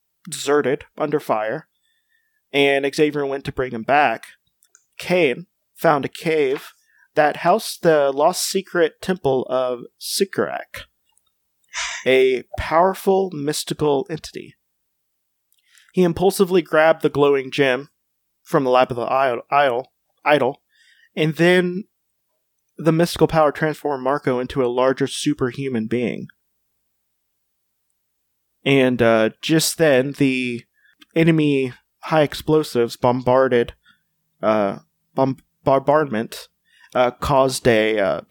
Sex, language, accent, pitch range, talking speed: male, English, American, 120-155 Hz, 105 wpm